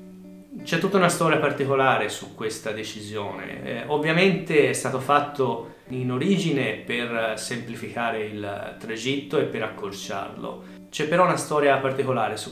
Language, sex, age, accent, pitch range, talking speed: Italian, male, 30-49, native, 110-140 Hz, 135 wpm